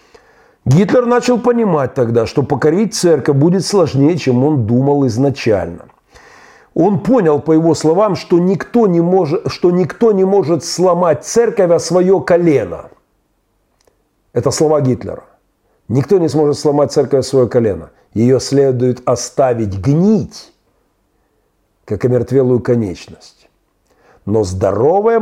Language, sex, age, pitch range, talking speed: Russian, male, 50-69, 105-160 Hz, 120 wpm